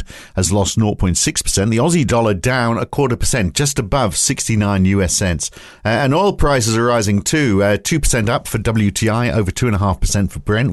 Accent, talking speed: British, 175 wpm